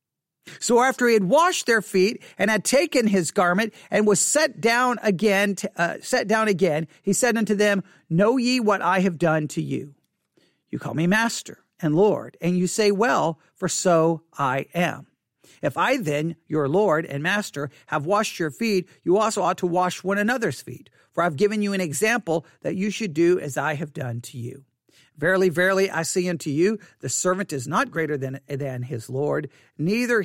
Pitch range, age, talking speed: 145-205 Hz, 50-69, 195 wpm